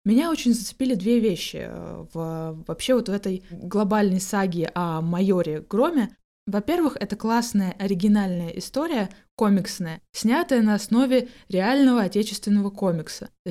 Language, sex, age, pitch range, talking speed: Russian, female, 20-39, 185-235 Hz, 120 wpm